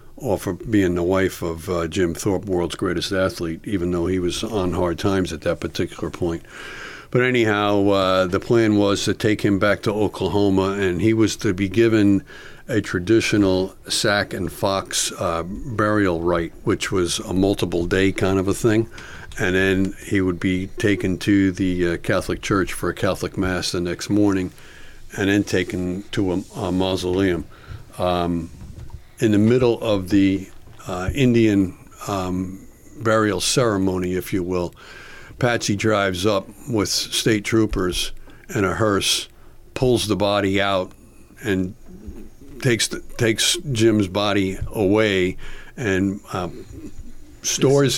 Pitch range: 95-110 Hz